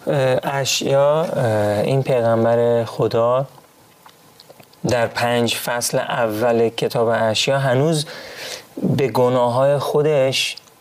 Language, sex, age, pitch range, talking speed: Persian, male, 30-49, 115-145 Hz, 85 wpm